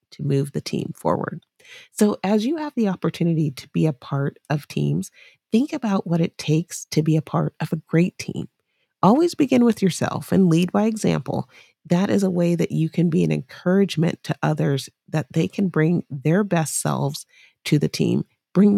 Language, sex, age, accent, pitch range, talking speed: English, female, 40-59, American, 155-195 Hz, 195 wpm